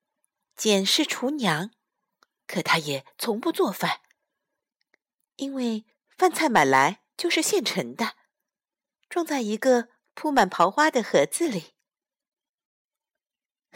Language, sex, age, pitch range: Chinese, female, 50-69, 185-300 Hz